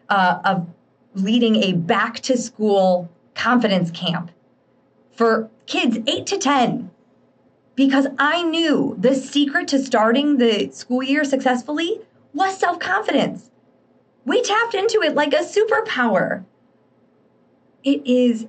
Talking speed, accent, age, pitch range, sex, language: 110 wpm, American, 20-39, 210-280 Hz, female, English